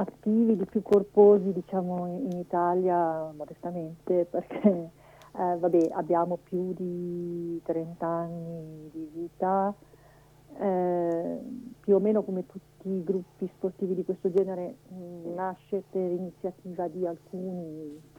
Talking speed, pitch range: 110 wpm, 165-195 Hz